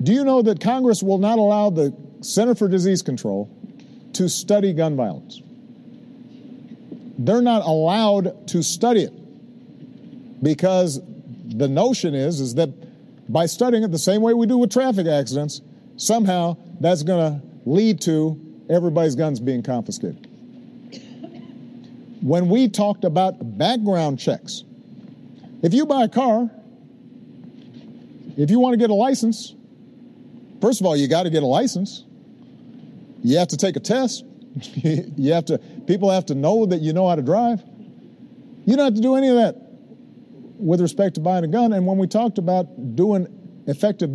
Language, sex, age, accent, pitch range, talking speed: English, male, 50-69, American, 180-245 Hz, 160 wpm